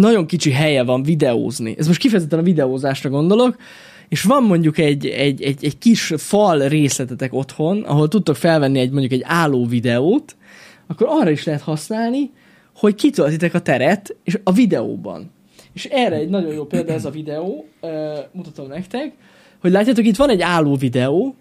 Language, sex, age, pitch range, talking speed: Hungarian, male, 20-39, 145-195 Hz, 170 wpm